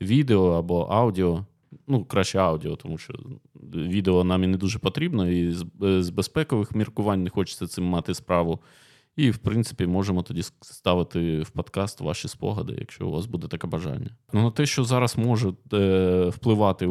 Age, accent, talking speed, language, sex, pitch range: 20-39, native, 160 wpm, Ukrainian, male, 90-110 Hz